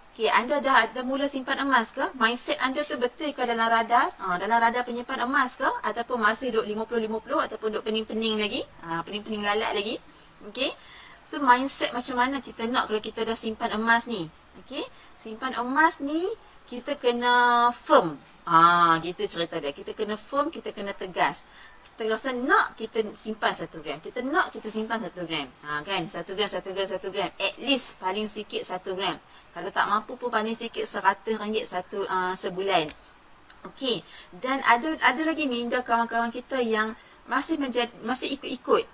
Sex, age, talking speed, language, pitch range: female, 30-49, 170 wpm, Malay, 210-260 Hz